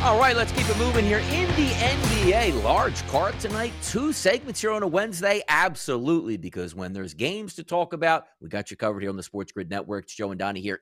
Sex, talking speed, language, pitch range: male, 235 wpm, English, 130-185 Hz